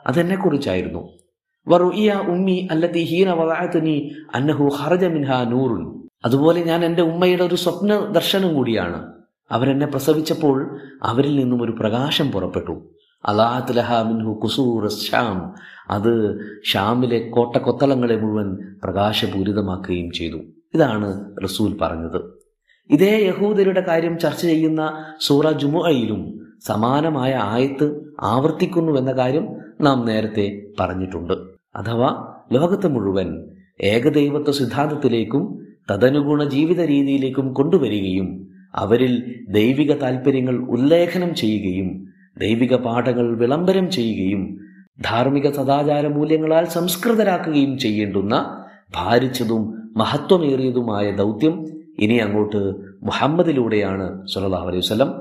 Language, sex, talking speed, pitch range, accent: Malayalam, male, 80 wpm, 105-155 Hz, native